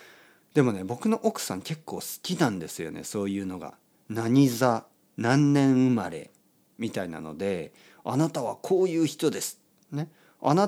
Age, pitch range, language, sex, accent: 40-59, 110-155 Hz, Japanese, male, native